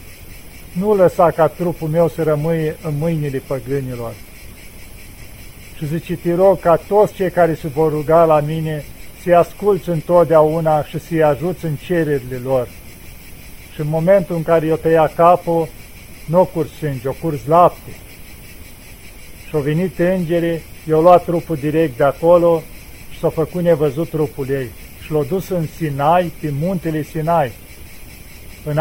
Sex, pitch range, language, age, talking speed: male, 145-170 Hz, Romanian, 50-69, 150 wpm